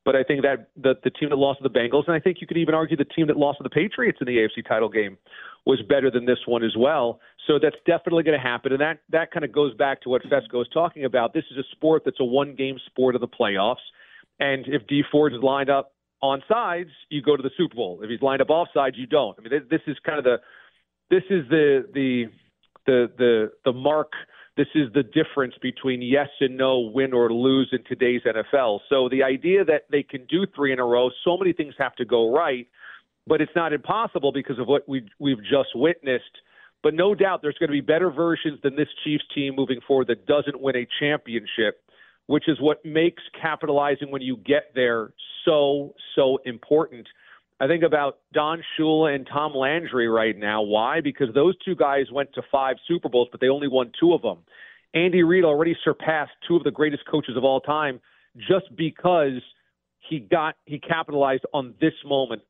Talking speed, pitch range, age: 220 wpm, 130-155 Hz, 40-59